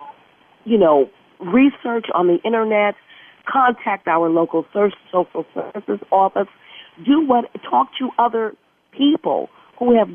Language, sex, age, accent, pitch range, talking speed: English, female, 50-69, American, 175-235 Hz, 120 wpm